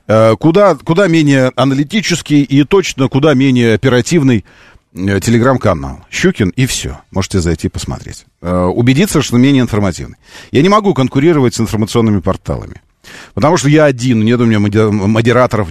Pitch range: 100-145 Hz